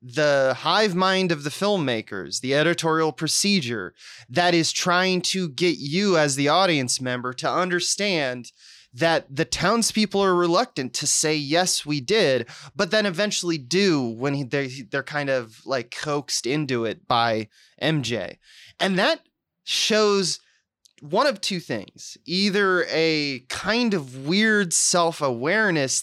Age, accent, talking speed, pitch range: 20-39, American, 135 wpm, 130-185 Hz